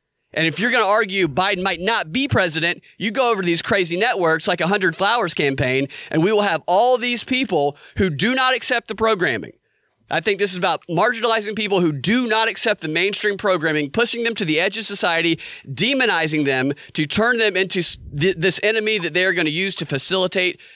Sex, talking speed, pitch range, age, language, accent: male, 210 wpm, 155-215 Hz, 30-49, English, American